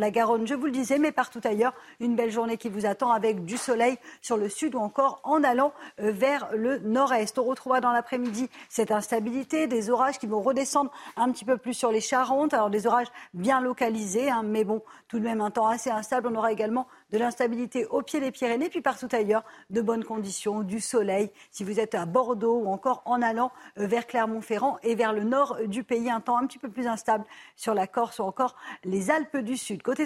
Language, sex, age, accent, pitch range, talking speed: French, female, 50-69, French, 220-255 Hz, 225 wpm